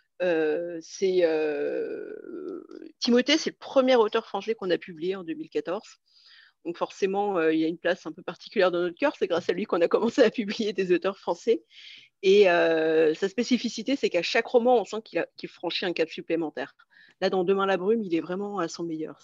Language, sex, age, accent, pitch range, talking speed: French, female, 40-59, French, 180-255 Hz, 210 wpm